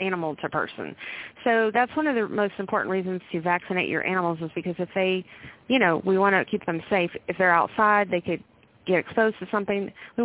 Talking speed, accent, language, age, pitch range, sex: 215 wpm, American, English, 30-49, 170-205 Hz, female